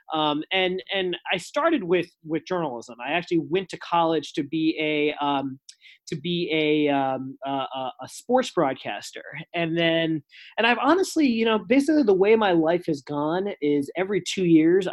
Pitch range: 155-195 Hz